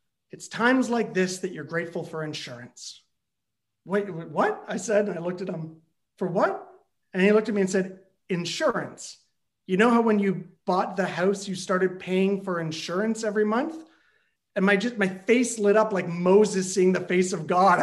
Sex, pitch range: male, 180-235 Hz